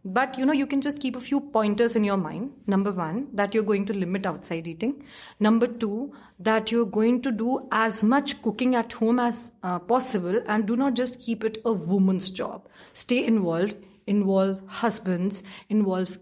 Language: English